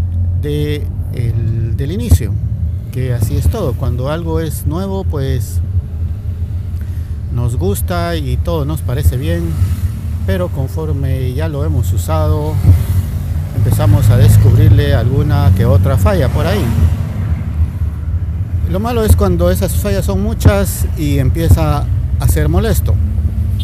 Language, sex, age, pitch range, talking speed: Spanish, male, 50-69, 80-100 Hz, 115 wpm